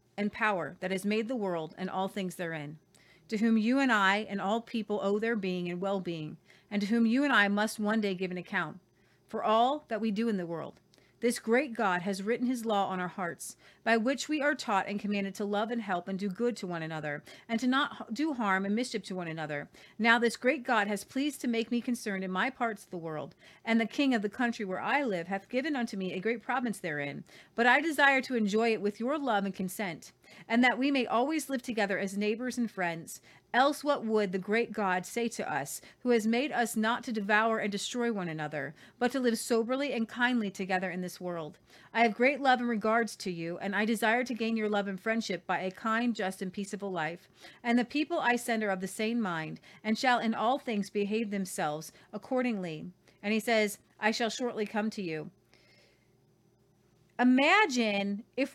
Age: 40-59